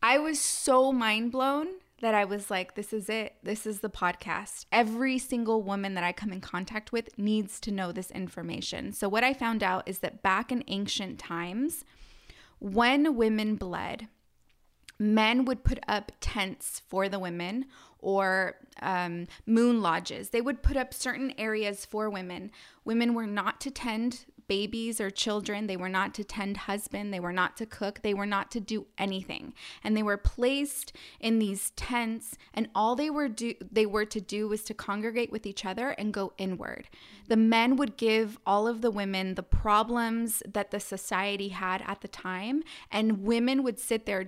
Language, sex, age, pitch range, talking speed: English, female, 20-39, 195-235 Hz, 185 wpm